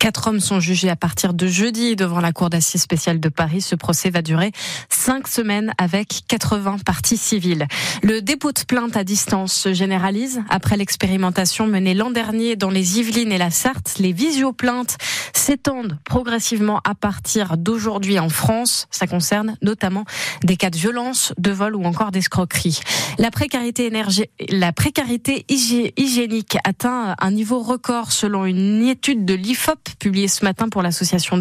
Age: 20-39